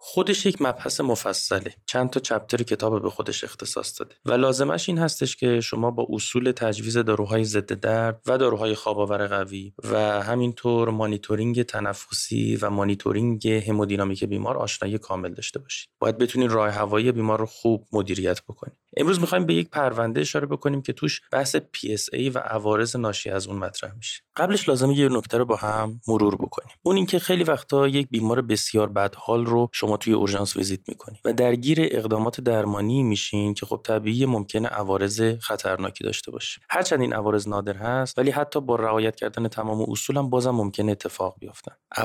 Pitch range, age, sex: 105-125 Hz, 20-39, male